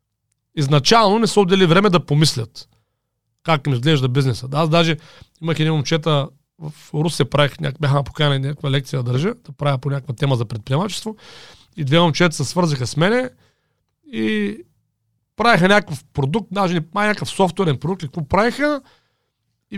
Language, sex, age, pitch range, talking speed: Bulgarian, male, 40-59, 140-190 Hz, 150 wpm